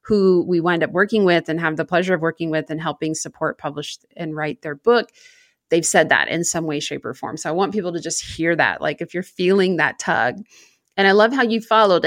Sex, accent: female, American